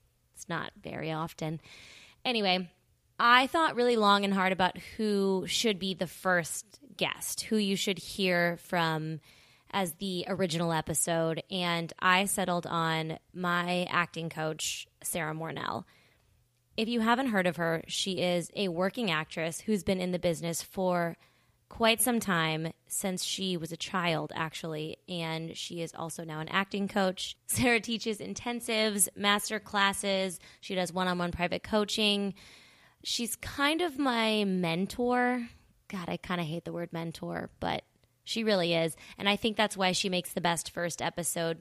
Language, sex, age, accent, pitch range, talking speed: English, female, 20-39, American, 165-200 Hz, 155 wpm